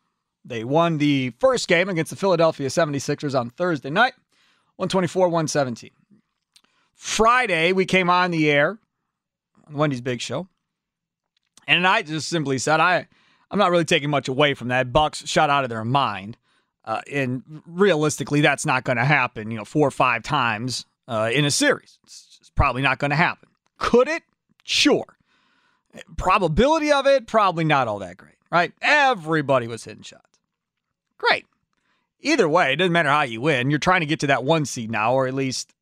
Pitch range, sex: 135-185 Hz, male